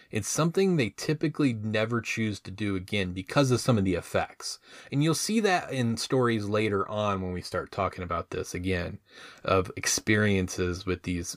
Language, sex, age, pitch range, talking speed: English, male, 30-49, 105-140 Hz, 180 wpm